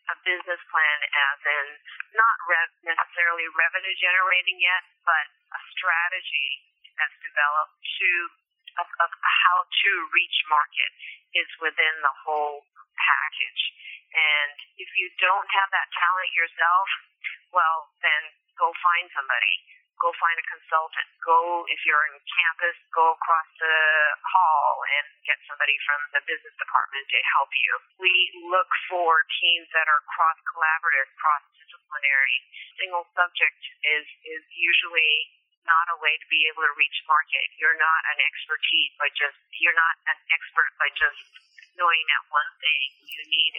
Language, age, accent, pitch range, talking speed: English, 40-59, American, 160-195 Hz, 140 wpm